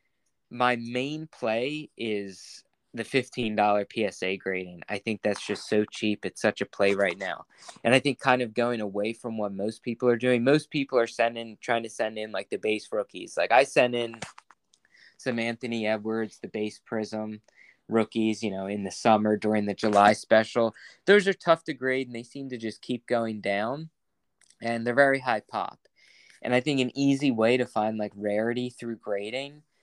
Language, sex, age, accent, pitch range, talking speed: English, male, 20-39, American, 105-125 Hz, 190 wpm